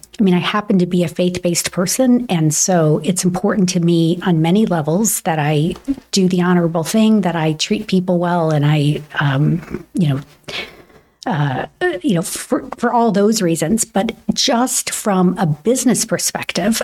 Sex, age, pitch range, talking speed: female, 50-69, 175-220 Hz, 170 wpm